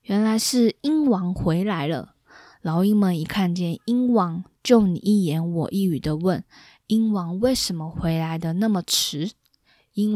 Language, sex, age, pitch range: Chinese, female, 20-39, 170-210 Hz